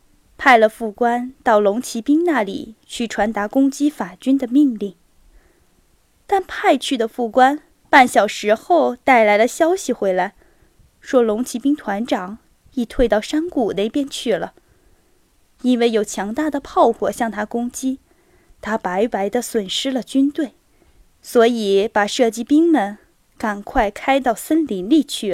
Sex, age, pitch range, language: female, 10-29, 220-285 Hz, Chinese